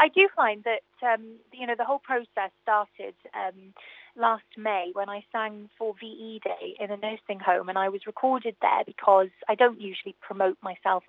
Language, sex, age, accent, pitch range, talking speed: English, female, 30-49, British, 195-230 Hz, 195 wpm